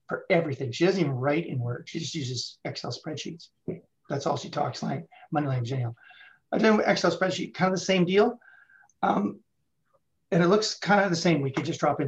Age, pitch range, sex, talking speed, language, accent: 30-49, 130-170 Hz, male, 220 wpm, English, American